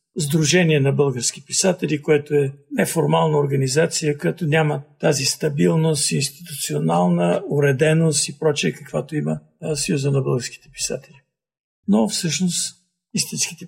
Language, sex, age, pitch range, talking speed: Bulgarian, male, 60-79, 135-160 Hz, 115 wpm